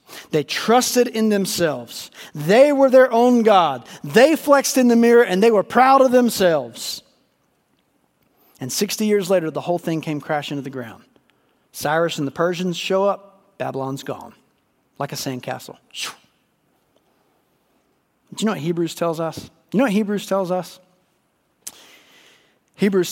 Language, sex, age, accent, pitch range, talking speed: English, male, 40-59, American, 155-250 Hz, 155 wpm